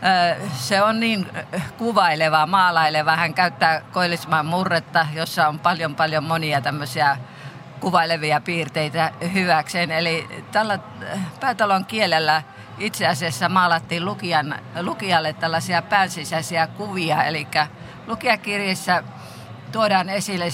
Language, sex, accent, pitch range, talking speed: Finnish, female, native, 155-180 Hz, 95 wpm